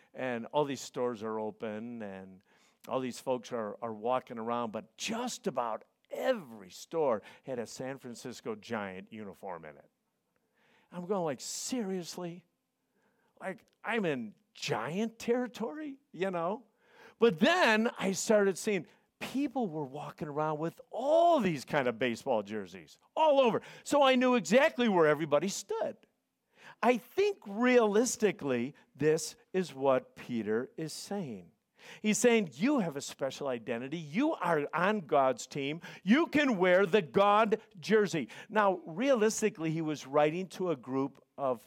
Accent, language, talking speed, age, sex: American, English, 145 wpm, 50-69, male